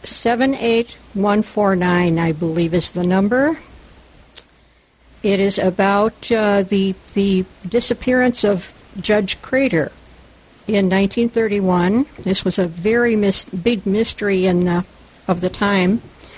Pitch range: 185-220 Hz